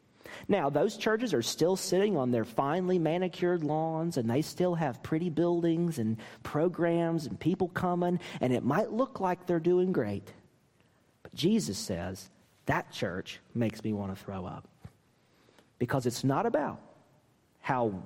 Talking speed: 155 wpm